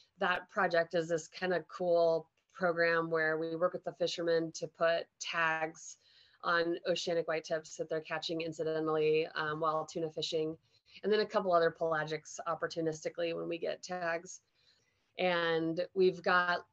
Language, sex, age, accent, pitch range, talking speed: English, female, 30-49, American, 160-180 Hz, 155 wpm